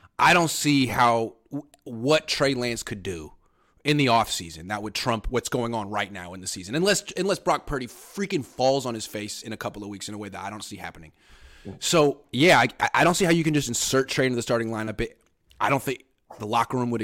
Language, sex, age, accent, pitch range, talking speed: English, male, 30-49, American, 105-135 Hz, 245 wpm